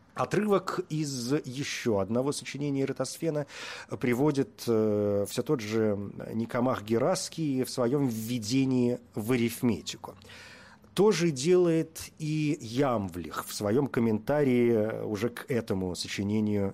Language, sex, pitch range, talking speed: Russian, male, 115-160 Hz, 105 wpm